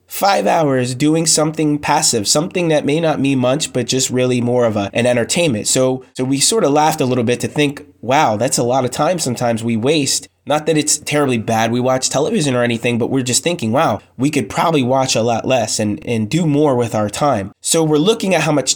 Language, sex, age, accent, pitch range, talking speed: English, male, 20-39, American, 125-160 Hz, 235 wpm